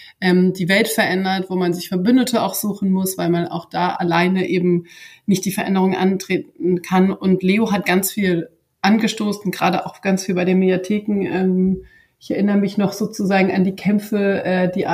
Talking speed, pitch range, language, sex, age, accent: 175 wpm, 185-210 Hz, German, female, 30-49, German